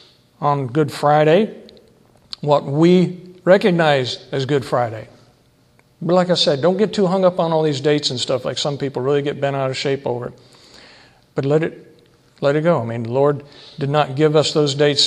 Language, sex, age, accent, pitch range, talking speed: English, male, 50-69, American, 135-165 Hz, 200 wpm